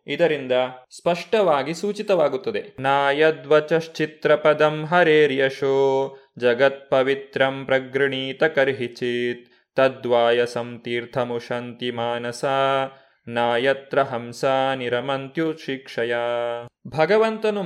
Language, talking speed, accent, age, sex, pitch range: Kannada, 55 wpm, native, 20-39, male, 135-175 Hz